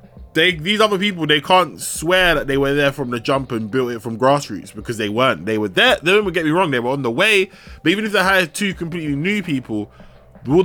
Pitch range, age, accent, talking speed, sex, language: 120-170 Hz, 20-39, British, 250 wpm, male, English